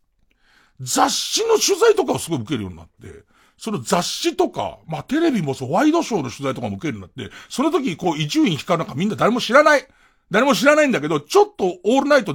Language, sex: Japanese, male